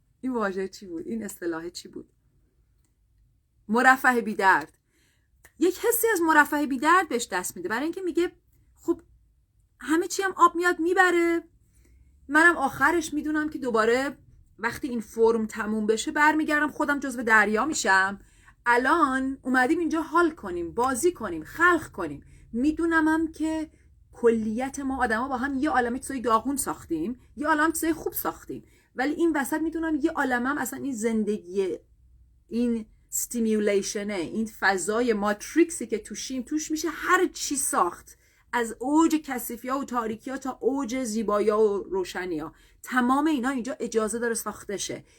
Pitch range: 225-315 Hz